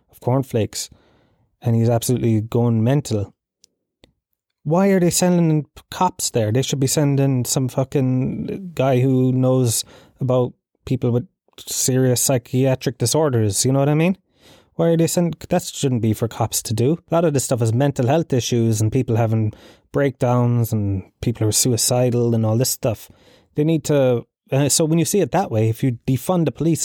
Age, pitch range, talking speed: 20-39, 115-140 Hz, 180 wpm